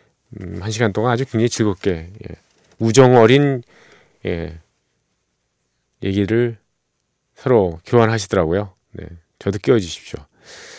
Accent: native